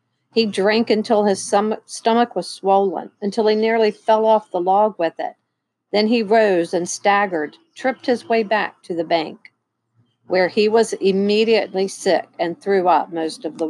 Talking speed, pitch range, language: 170 wpm, 175-225 Hz, English